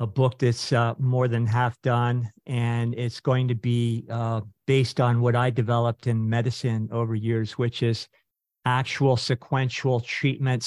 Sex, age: male, 50-69